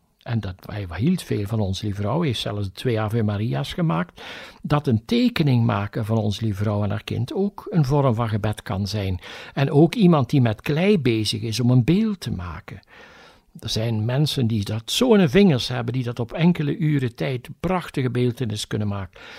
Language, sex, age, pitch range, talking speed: Dutch, male, 60-79, 115-165 Hz, 195 wpm